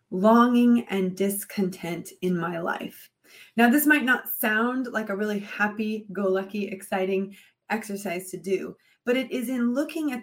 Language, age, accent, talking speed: English, 30-49, American, 145 wpm